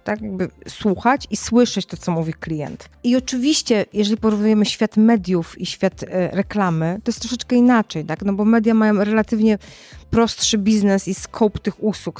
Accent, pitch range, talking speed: native, 170-205 Hz, 170 wpm